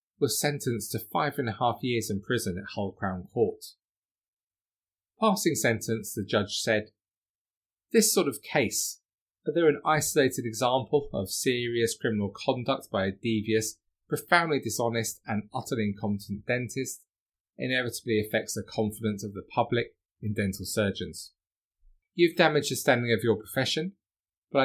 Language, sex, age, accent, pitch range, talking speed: English, male, 30-49, British, 100-150 Hz, 140 wpm